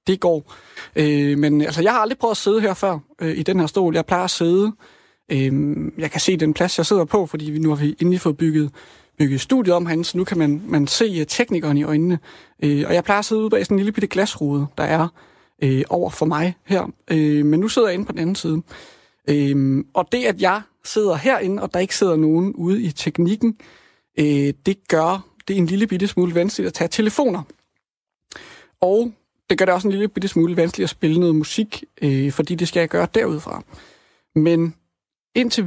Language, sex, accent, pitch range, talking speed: Danish, male, native, 155-195 Hz, 220 wpm